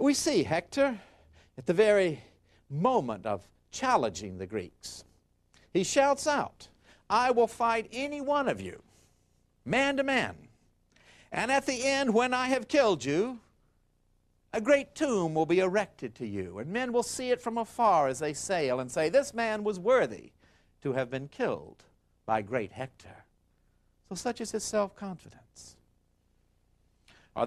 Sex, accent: male, American